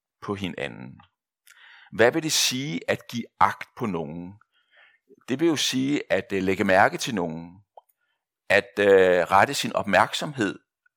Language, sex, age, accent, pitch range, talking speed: Danish, male, 60-79, native, 95-155 Hz, 130 wpm